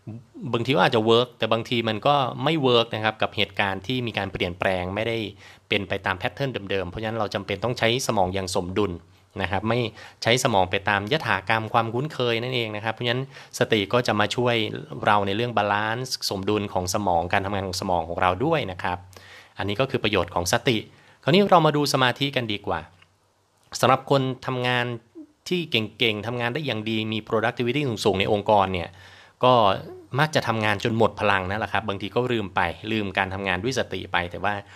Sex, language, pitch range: male, Thai, 100-120 Hz